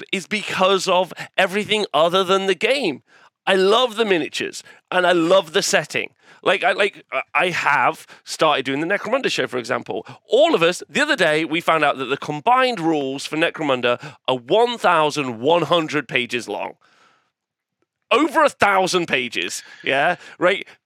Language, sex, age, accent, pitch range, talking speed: English, male, 30-49, British, 130-195 Hz, 150 wpm